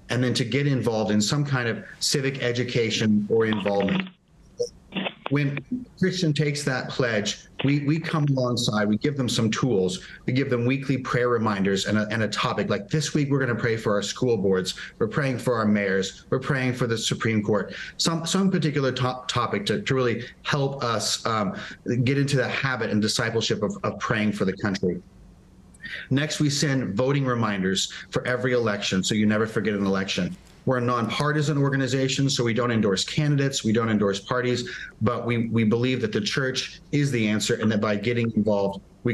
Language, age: English, 40-59